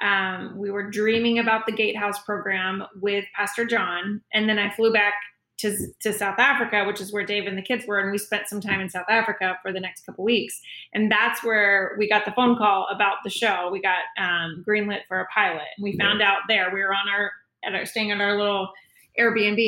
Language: English